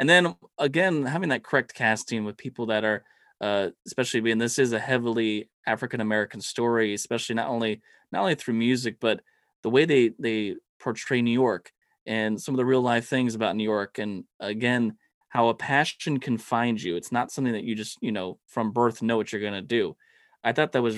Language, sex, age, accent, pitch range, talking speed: English, male, 20-39, American, 110-130 Hz, 210 wpm